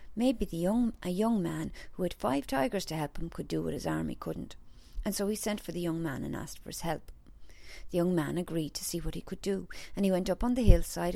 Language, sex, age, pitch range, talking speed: English, female, 40-59, 145-185 Hz, 265 wpm